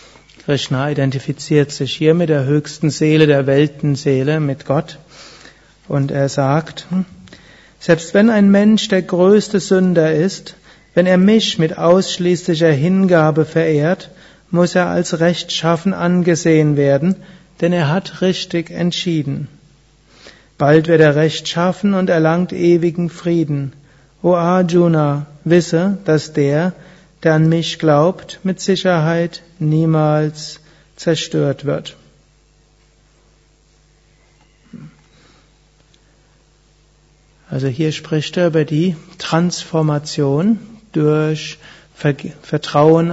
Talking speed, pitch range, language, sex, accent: 100 wpm, 150-175 Hz, German, male, German